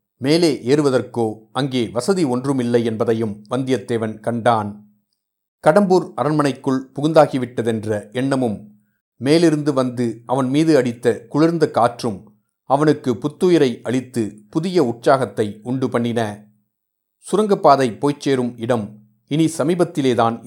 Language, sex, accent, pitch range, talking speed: Tamil, male, native, 115-145 Hz, 90 wpm